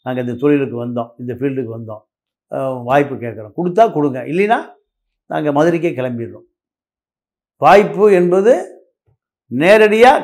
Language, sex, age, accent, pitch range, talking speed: Tamil, male, 50-69, native, 140-220 Hz, 105 wpm